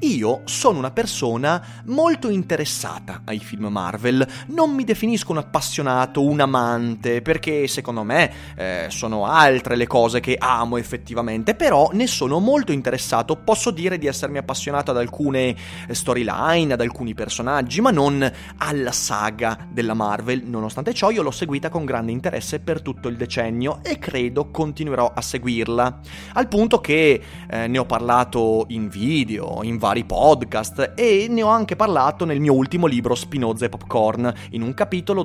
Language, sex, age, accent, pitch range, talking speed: Italian, male, 30-49, native, 115-160 Hz, 160 wpm